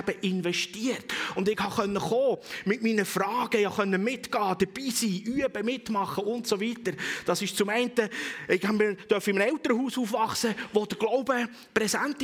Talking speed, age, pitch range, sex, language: 145 wpm, 30-49, 160-215 Hz, male, German